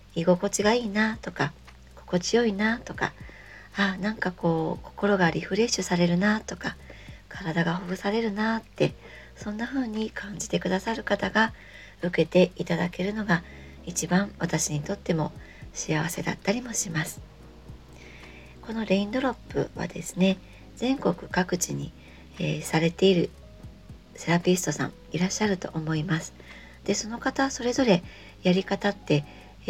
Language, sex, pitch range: Japanese, male, 155-210 Hz